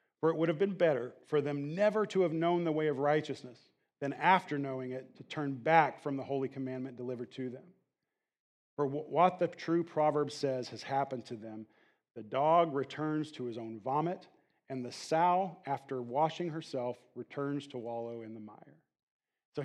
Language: English